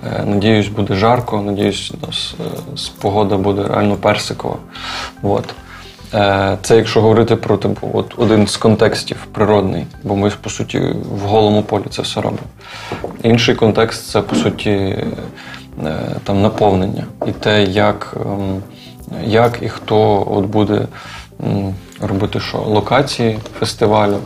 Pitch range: 100-115 Hz